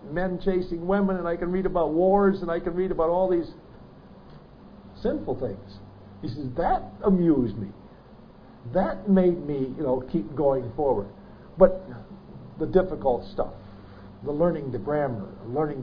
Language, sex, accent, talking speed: English, male, American, 150 wpm